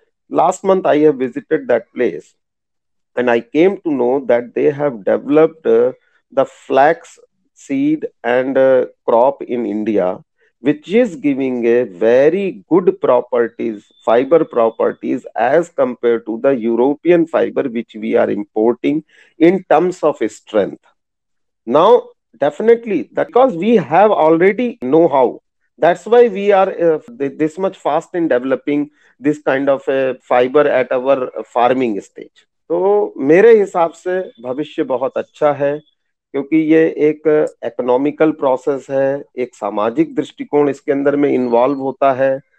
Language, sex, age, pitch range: Hindi, male, 40-59, 130-210 Hz